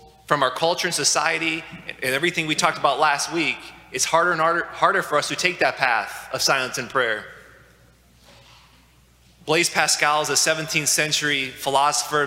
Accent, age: American, 20-39